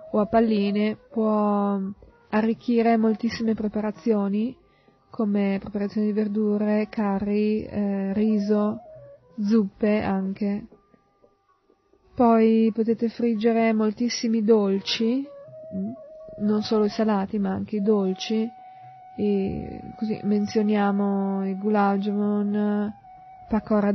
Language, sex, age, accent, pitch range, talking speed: Italian, female, 20-39, native, 200-230 Hz, 90 wpm